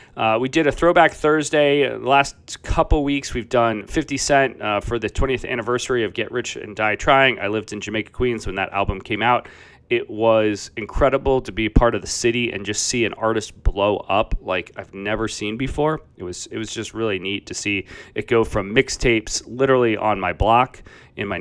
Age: 30-49